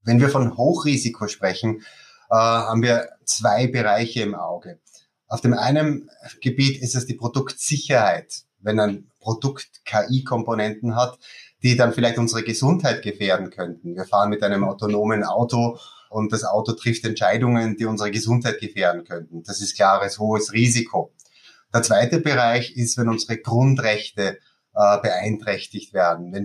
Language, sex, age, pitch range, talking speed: German, male, 30-49, 105-120 Hz, 140 wpm